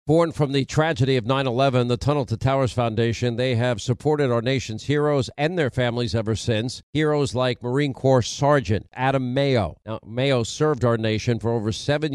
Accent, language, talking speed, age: American, English, 185 wpm, 50-69